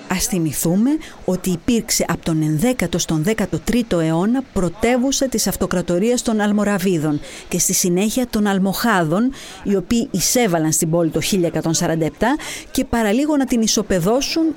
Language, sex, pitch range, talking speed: Greek, female, 180-265 Hz, 130 wpm